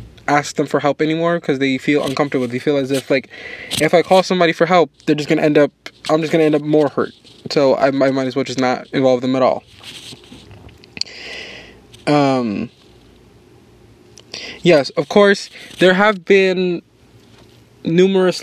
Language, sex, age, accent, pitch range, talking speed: English, male, 20-39, American, 135-165 Hz, 170 wpm